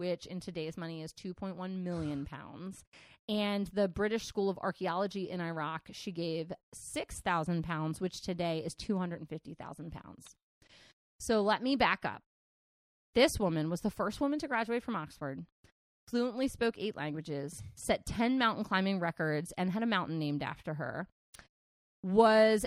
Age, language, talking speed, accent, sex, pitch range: 30-49, English, 150 wpm, American, female, 175-230 Hz